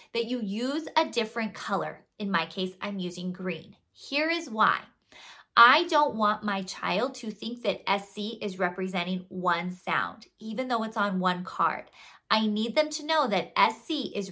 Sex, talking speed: female, 175 wpm